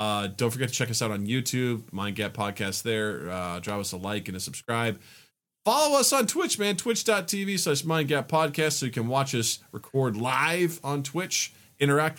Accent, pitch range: American, 110-160 Hz